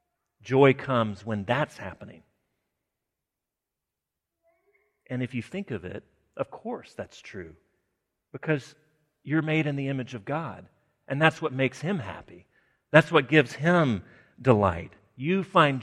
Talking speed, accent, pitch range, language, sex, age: 135 wpm, American, 115-150 Hz, English, male, 40-59